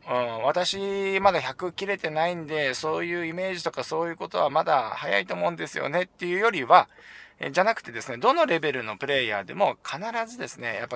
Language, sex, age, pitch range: Japanese, male, 20-39, 110-180 Hz